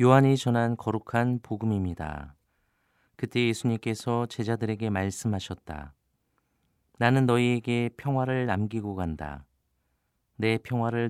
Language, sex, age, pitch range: Korean, male, 40-59, 95-120 Hz